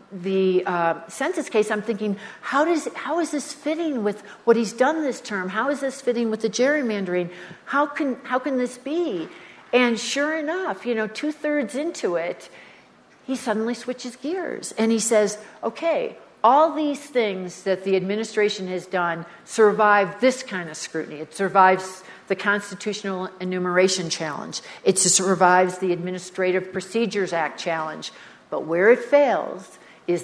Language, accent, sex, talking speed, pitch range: English, American, female, 155 wpm, 180-230 Hz